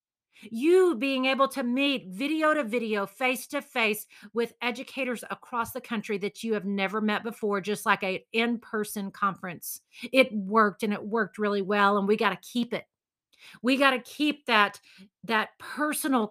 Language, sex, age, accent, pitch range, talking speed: English, female, 40-59, American, 210-275 Hz, 170 wpm